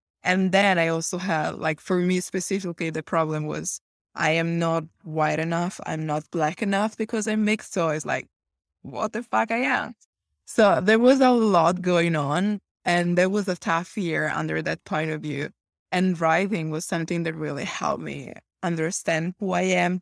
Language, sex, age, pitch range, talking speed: English, female, 20-39, 165-195 Hz, 185 wpm